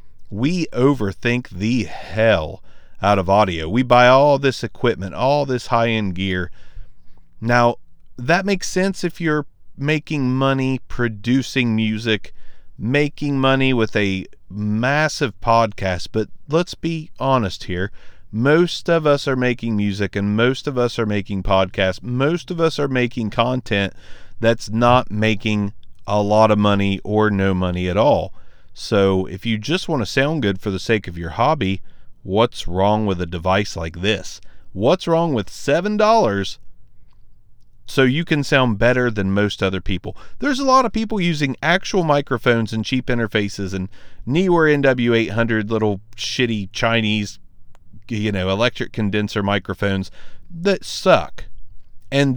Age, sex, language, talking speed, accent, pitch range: 40-59, male, English, 145 wpm, American, 95-130 Hz